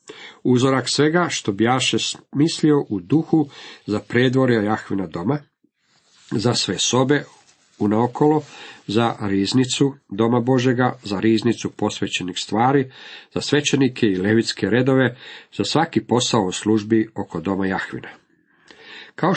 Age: 50-69